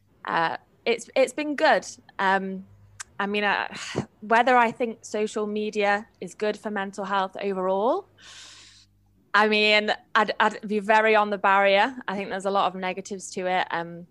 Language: English